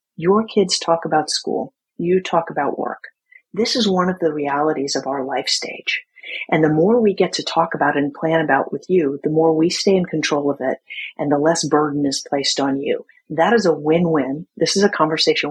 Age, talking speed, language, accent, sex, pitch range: 40-59, 215 wpm, English, American, female, 150-185 Hz